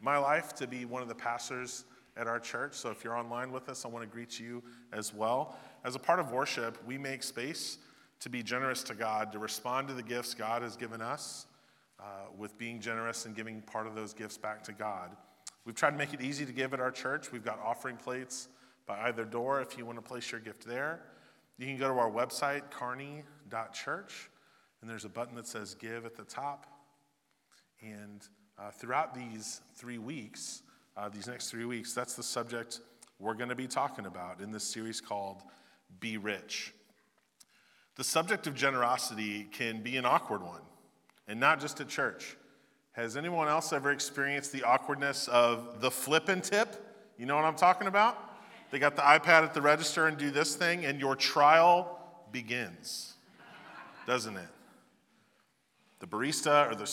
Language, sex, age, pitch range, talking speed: English, male, 40-59, 115-140 Hz, 190 wpm